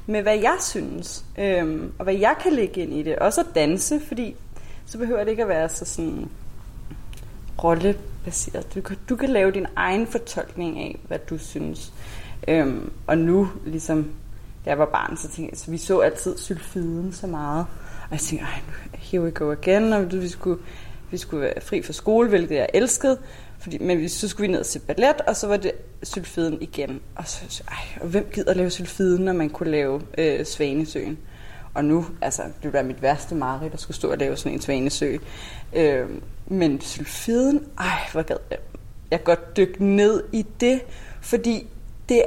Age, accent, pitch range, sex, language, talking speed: 20-39, native, 155-215 Hz, female, Danish, 195 wpm